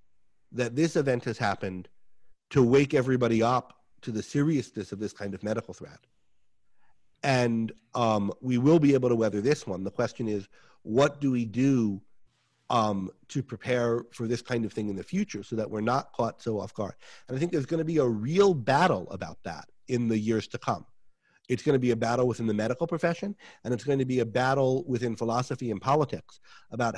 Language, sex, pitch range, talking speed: English, male, 115-135 Hz, 205 wpm